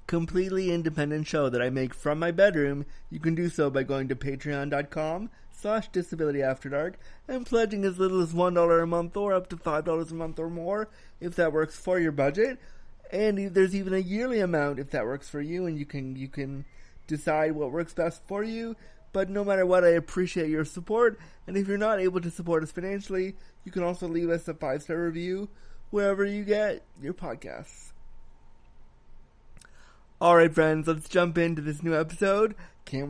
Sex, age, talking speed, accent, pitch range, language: male, 30-49, 185 wpm, American, 140-180 Hz, English